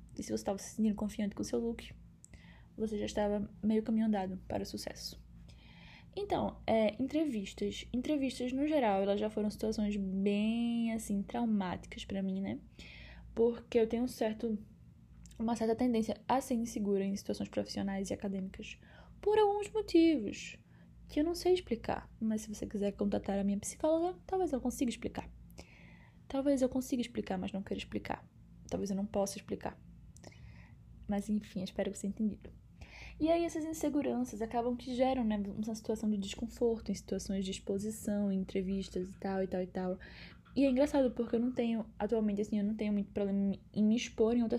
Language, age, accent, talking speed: Portuguese, 10-29, Brazilian, 180 wpm